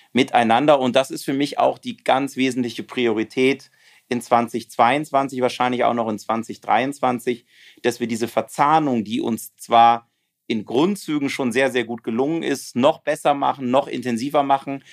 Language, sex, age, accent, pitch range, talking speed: German, male, 40-59, German, 125-155 Hz, 155 wpm